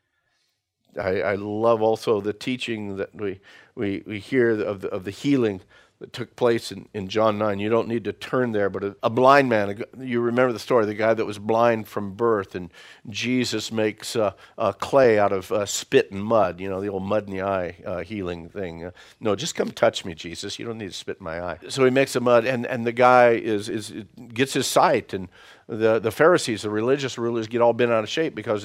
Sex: male